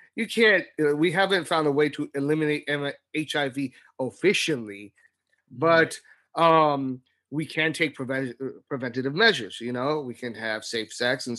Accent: American